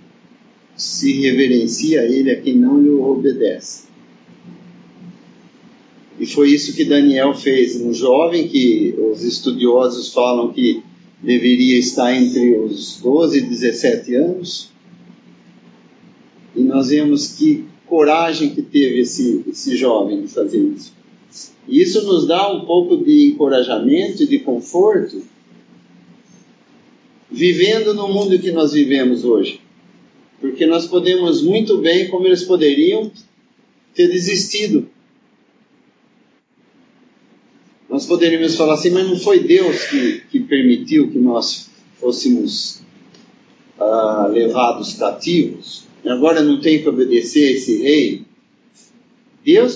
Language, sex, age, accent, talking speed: English, male, 50-69, Brazilian, 120 wpm